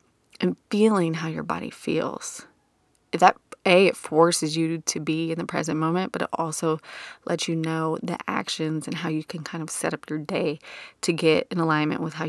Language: English